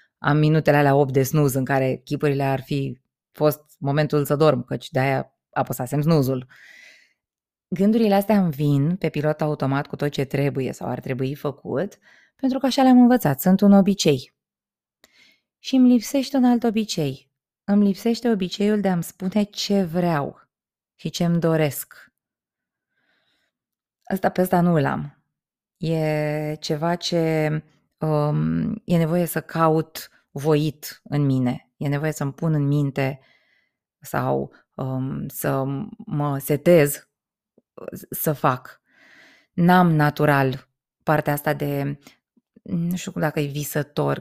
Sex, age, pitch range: female, 20-39, 145-200 Hz